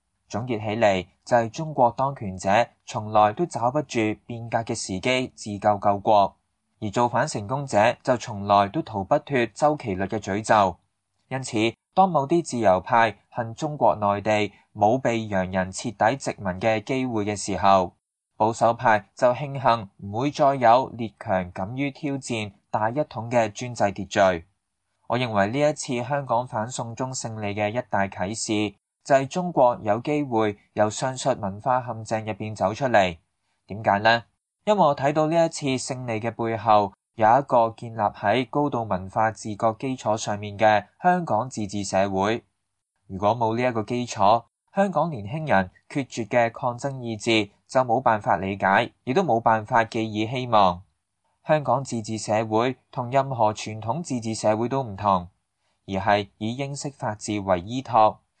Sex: male